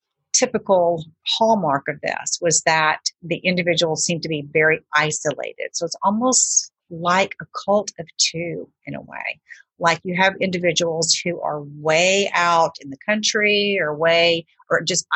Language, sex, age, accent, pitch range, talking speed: English, female, 40-59, American, 150-180 Hz, 155 wpm